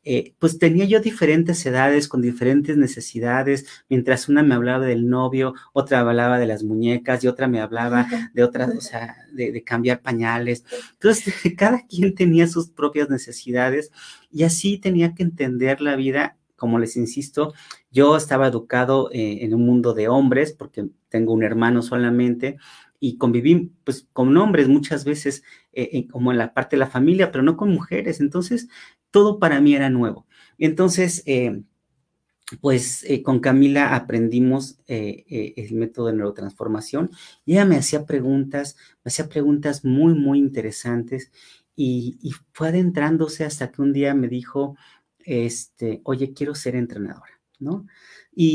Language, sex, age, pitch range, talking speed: Spanish, male, 40-59, 120-155 Hz, 160 wpm